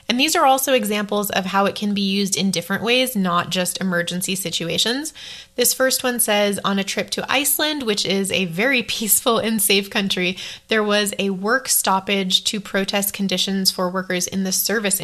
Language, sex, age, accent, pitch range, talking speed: English, female, 20-39, American, 175-210 Hz, 190 wpm